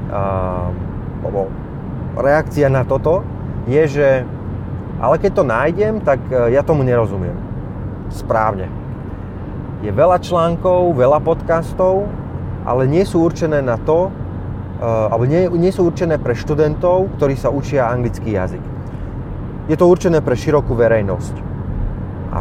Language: Slovak